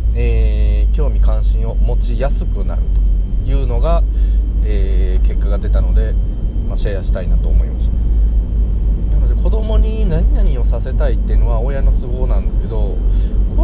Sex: male